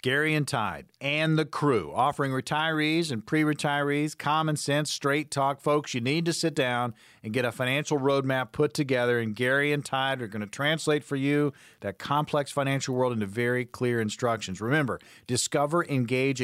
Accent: American